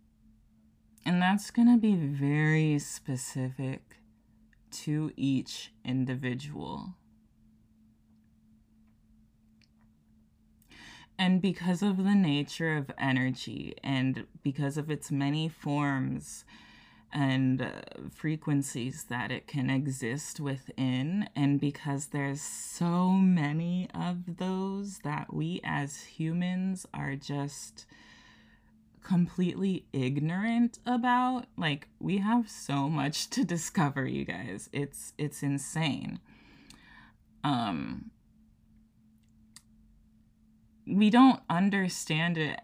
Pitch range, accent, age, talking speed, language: 130-170 Hz, American, 20-39, 90 wpm, English